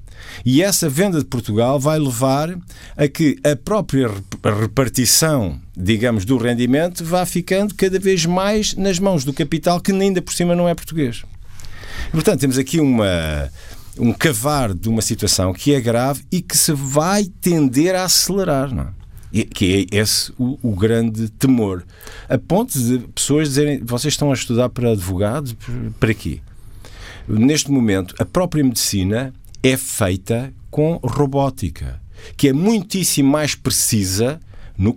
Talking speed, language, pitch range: 155 wpm, Portuguese, 100-150 Hz